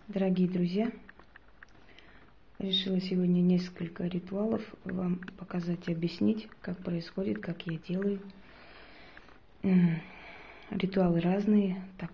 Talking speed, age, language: 90 wpm, 30-49, Russian